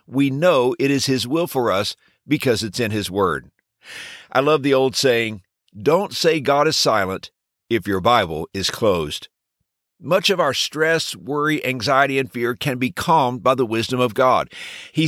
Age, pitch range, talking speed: 50-69, 120-165 Hz, 180 wpm